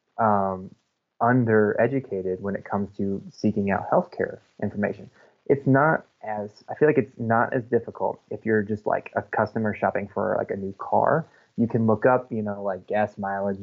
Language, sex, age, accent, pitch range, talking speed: English, male, 20-39, American, 100-110 Hz, 180 wpm